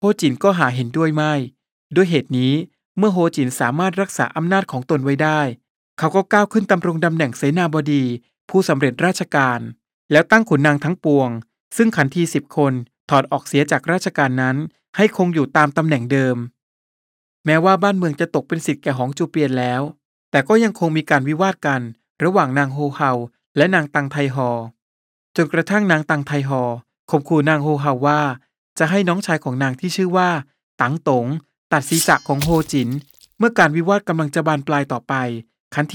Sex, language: male, Thai